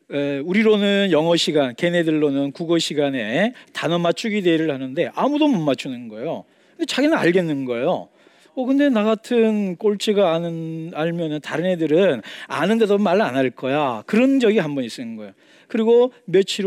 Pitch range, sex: 155-220 Hz, male